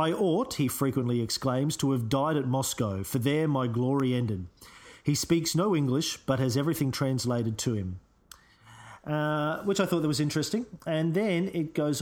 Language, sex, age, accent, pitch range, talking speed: English, male, 40-59, Australian, 125-155 Hz, 175 wpm